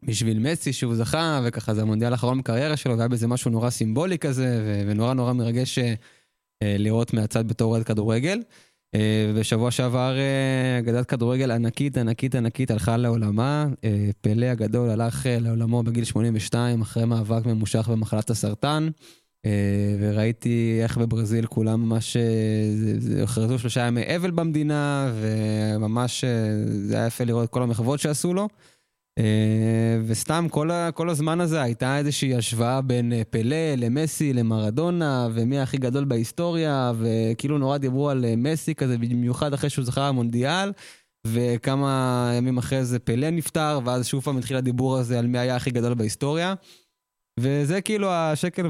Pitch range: 115-135 Hz